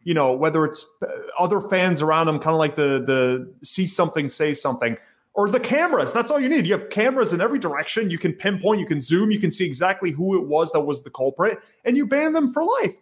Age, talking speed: 30-49, 245 wpm